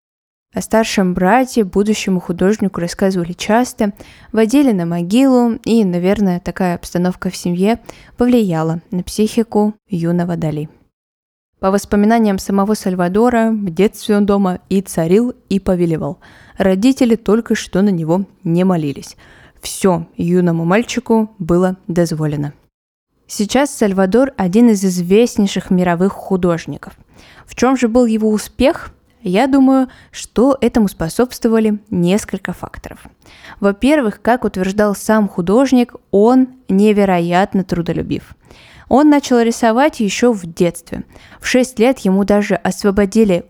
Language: Russian